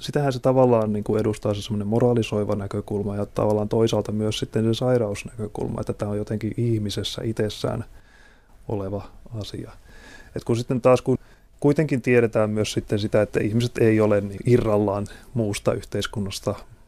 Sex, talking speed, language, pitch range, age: male, 150 wpm, Finnish, 105-120 Hz, 30-49